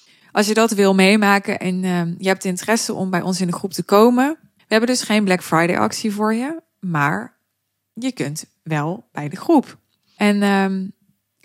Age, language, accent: 20-39, Dutch, Dutch